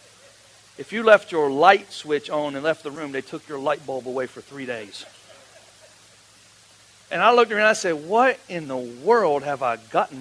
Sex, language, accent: male, English, American